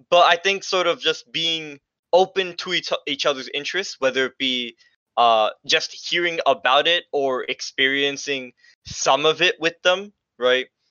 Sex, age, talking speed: male, 20-39, 155 wpm